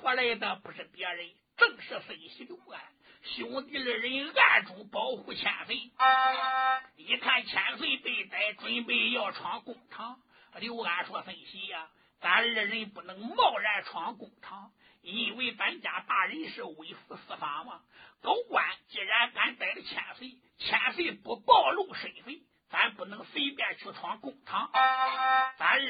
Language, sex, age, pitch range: Chinese, male, 50-69, 230-300 Hz